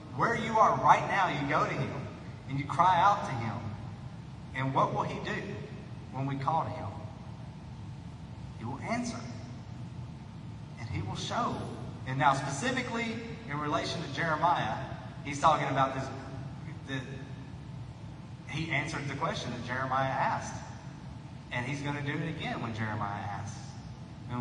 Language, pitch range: English, 125-140 Hz